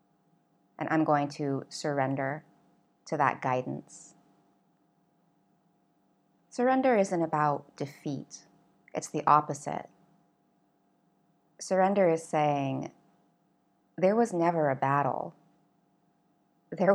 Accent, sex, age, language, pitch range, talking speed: American, female, 30-49, English, 145-170 Hz, 85 wpm